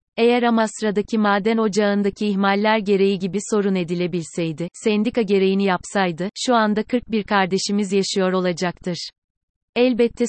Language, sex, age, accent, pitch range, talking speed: Turkish, female, 30-49, native, 195-225 Hz, 110 wpm